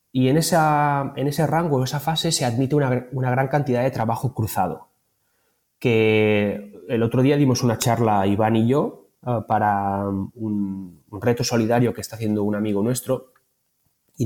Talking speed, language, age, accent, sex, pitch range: 170 wpm, Spanish, 20-39, Spanish, male, 105-130 Hz